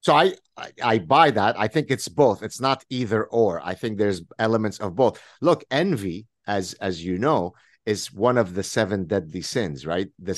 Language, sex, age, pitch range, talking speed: English, male, 50-69, 105-125 Hz, 200 wpm